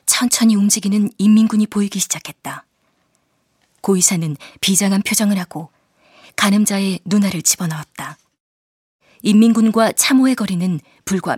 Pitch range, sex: 180-215 Hz, female